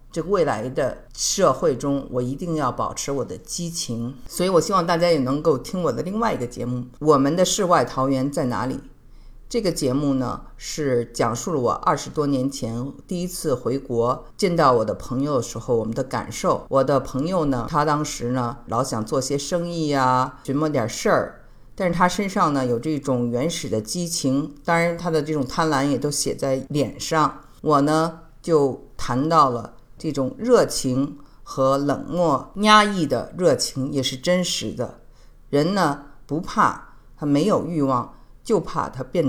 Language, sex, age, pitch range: Chinese, female, 50-69, 130-170 Hz